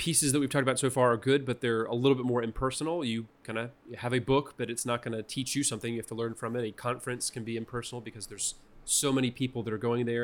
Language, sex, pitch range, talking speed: English, male, 110-125 Hz, 295 wpm